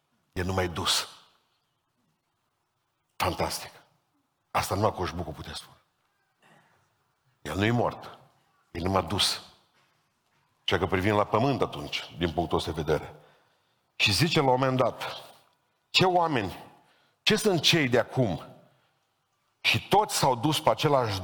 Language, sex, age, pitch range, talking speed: Romanian, male, 50-69, 100-145 Hz, 135 wpm